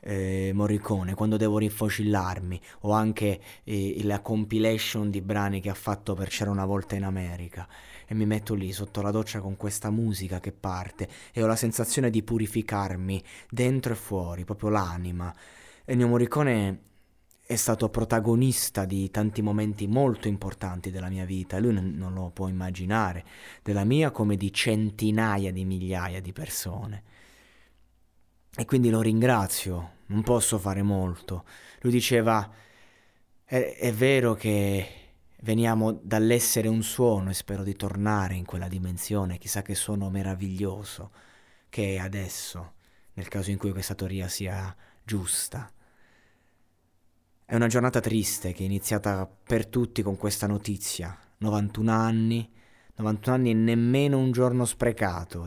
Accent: native